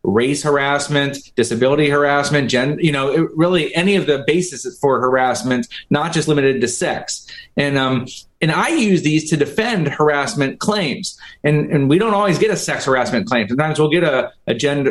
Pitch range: 135-170 Hz